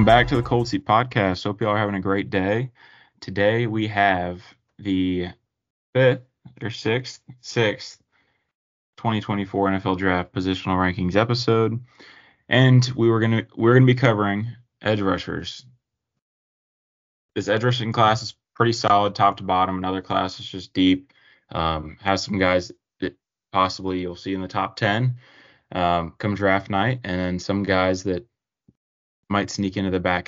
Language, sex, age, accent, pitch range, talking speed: English, male, 20-39, American, 95-110 Hz, 155 wpm